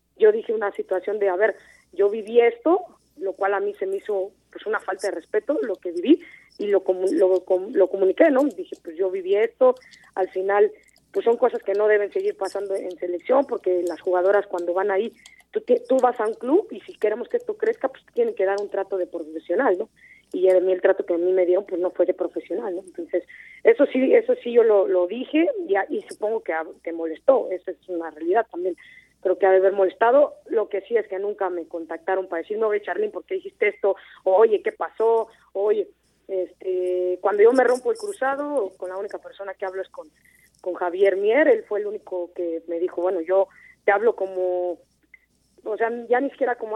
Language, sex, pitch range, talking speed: Spanish, female, 180-250 Hz, 220 wpm